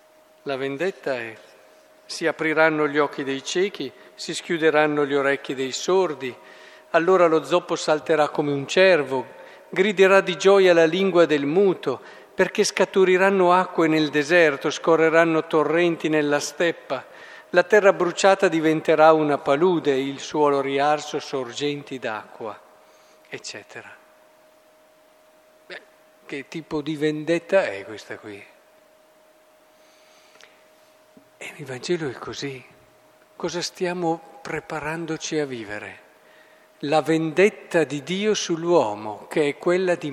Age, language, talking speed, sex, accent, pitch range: 50-69, Italian, 110 wpm, male, native, 135-180 Hz